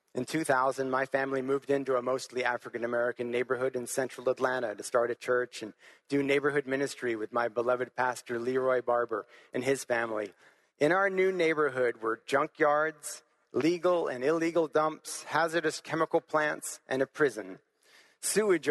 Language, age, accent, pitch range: English, 40-59, American, 125-150 Hz